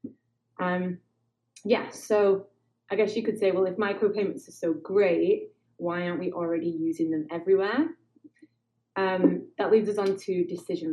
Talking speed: 155 wpm